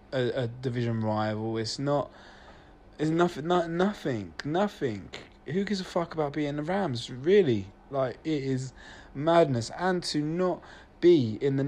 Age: 20-39